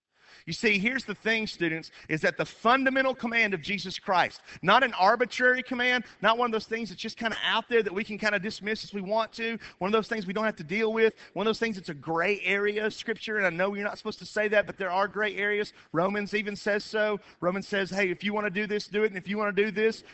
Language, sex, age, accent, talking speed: English, male, 40-59, American, 285 wpm